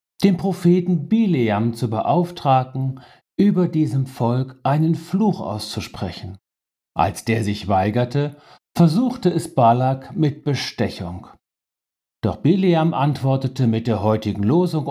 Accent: German